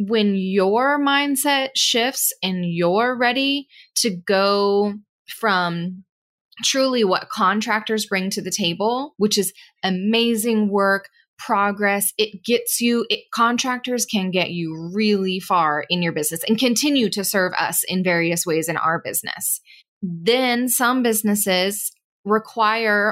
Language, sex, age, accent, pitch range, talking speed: English, female, 20-39, American, 185-230 Hz, 130 wpm